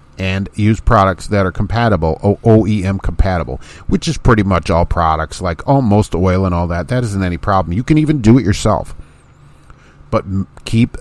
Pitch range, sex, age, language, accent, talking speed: 85-115 Hz, male, 50-69, English, American, 175 wpm